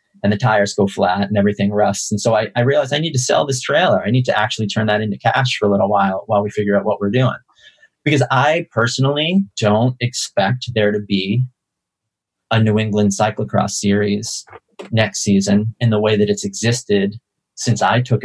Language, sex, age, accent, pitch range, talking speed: English, male, 30-49, American, 105-130 Hz, 205 wpm